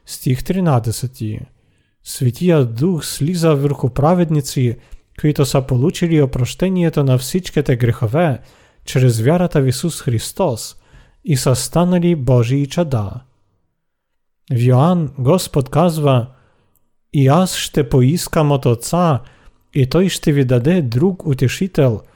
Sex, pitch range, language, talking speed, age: male, 125-165 Hz, Bulgarian, 110 wpm, 40-59